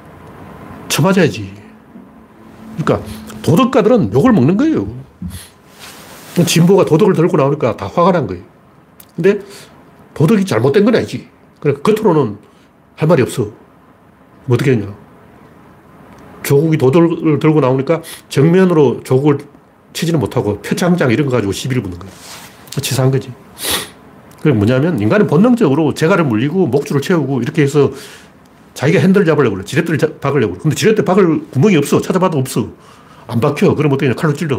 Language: Korean